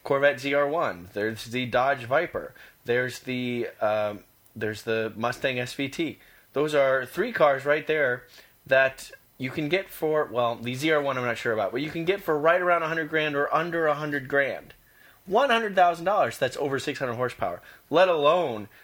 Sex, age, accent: male, 30-49, American